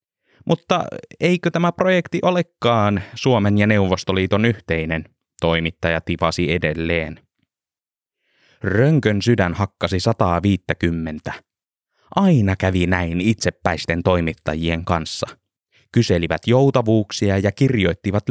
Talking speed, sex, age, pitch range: 85 wpm, male, 20-39, 90-120 Hz